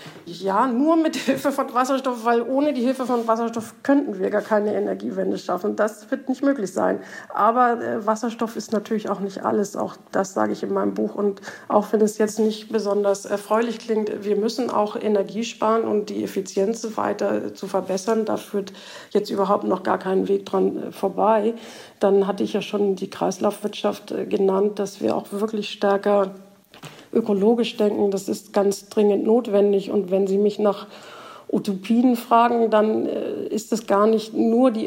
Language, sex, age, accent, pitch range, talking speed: German, female, 50-69, German, 195-220 Hz, 175 wpm